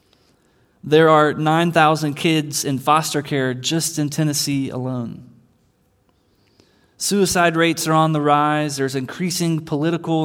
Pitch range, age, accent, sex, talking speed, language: 135-160 Hz, 20-39, American, male, 115 wpm, English